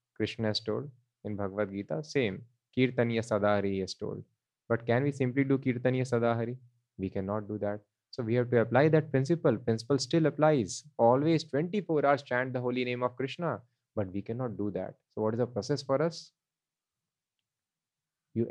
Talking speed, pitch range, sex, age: 175 wpm, 110-135 Hz, male, 20-39